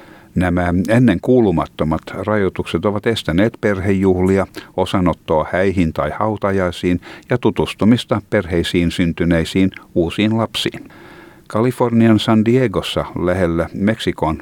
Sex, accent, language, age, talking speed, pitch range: male, native, Finnish, 60-79, 90 wpm, 85-105 Hz